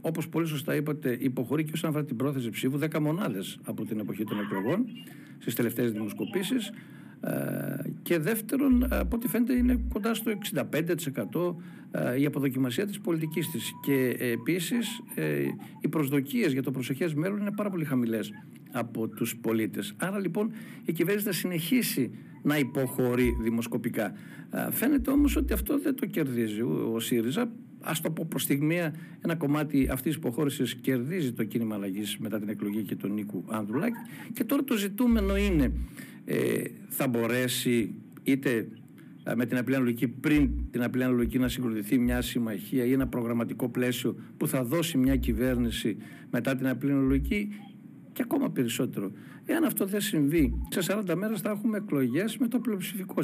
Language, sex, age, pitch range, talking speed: Greek, male, 60-79, 125-205 Hz, 155 wpm